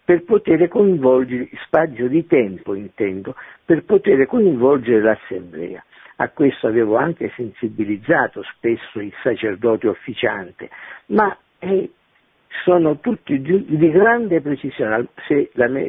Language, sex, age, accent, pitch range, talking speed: Italian, male, 50-69, native, 120-175 Hz, 115 wpm